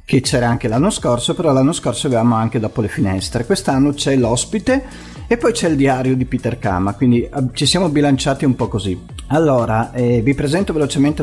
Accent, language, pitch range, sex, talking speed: native, Italian, 110-140 Hz, male, 190 wpm